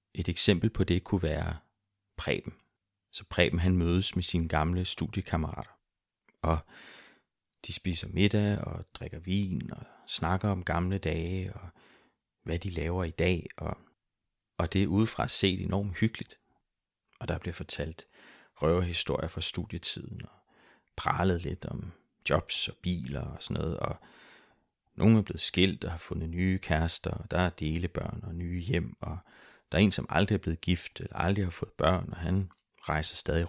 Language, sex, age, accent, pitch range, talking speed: Danish, male, 30-49, native, 85-95 Hz, 165 wpm